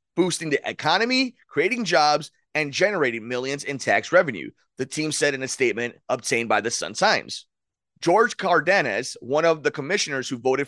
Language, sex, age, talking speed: English, male, 30-49, 165 wpm